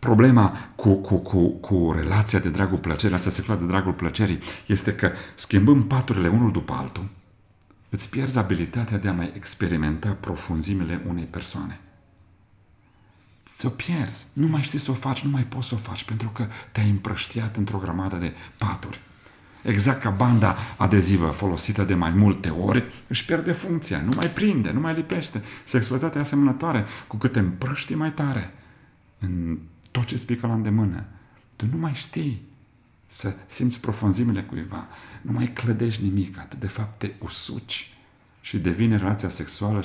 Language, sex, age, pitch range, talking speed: Romanian, male, 40-59, 95-120 Hz, 165 wpm